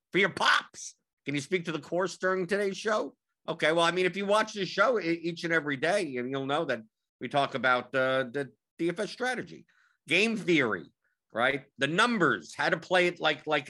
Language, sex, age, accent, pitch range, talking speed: English, male, 50-69, American, 120-170 Hz, 200 wpm